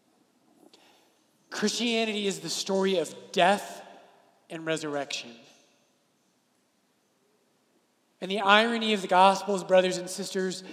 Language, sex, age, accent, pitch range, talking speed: English, male, 30-49, American, 180-215 Hz, 95 wpm